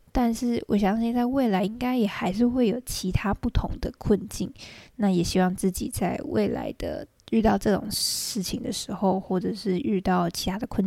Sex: female